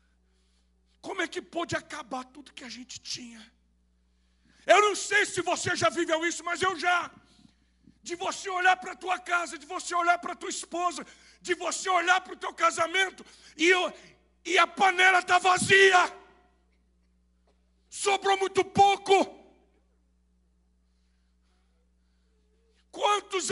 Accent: Brazilian